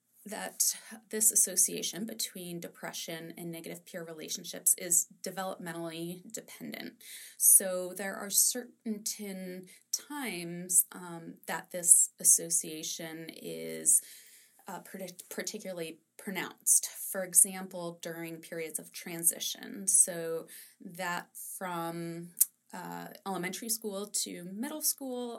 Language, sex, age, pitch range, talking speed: English, female, 20-39, 175-220 Hz, 95 wpm